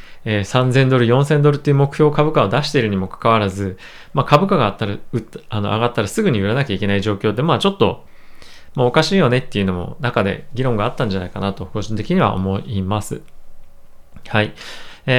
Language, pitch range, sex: Japanese, 105-150 Hz, male